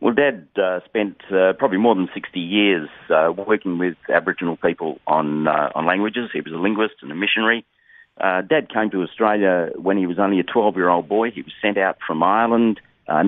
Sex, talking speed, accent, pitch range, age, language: male, 205 wpm, Australian, 85-100 Hz, 40-59, English